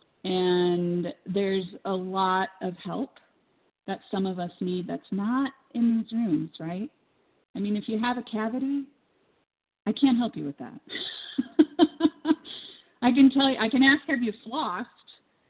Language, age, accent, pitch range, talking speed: English, 30-49, American, 175-245 Hz, 155 wpm